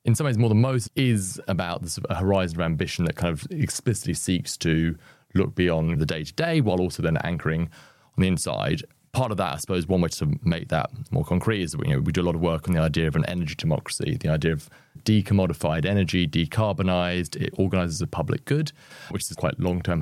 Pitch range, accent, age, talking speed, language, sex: 80-105 Hz, British, 30-49, 225 wpm, English, male